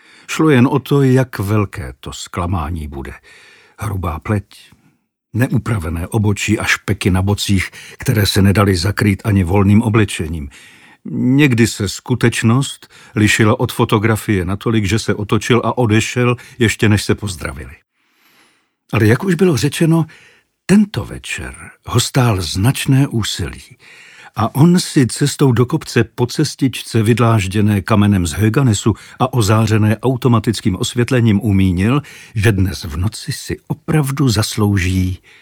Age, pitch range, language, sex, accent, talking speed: 50-69, 100-130 Hz, Czech, male, native, 125 wpm